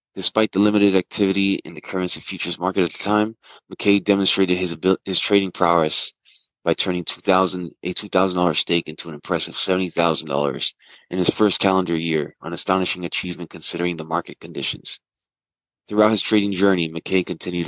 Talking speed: 155 wpm